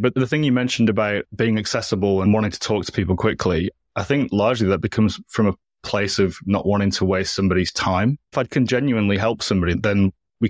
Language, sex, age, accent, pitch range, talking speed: English, male, 20-39, British, 95-110 Hz, 215 wpm